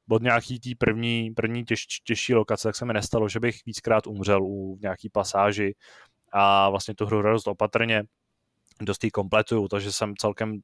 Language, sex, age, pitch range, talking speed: Czech, male, 20-39, 100-115 Hz, 170 wpm